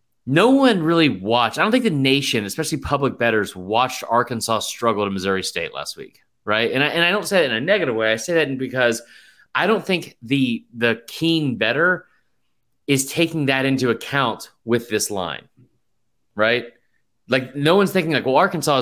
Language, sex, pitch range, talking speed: English, male, 115-150 Hz, 190 wpm